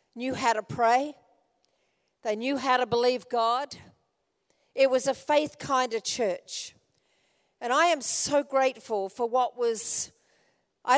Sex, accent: female, Australian